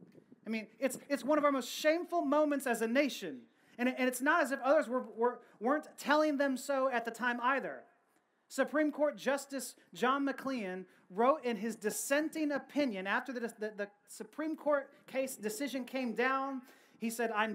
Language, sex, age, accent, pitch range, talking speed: English, male, 30-49, American, 215-280 Hz, 185 wpm